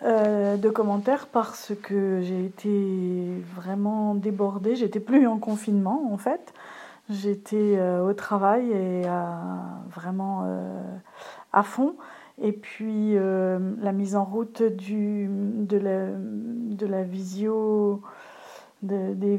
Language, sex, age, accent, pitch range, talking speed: French, female, 40-59, French, 190-225 Hz, 95 wpm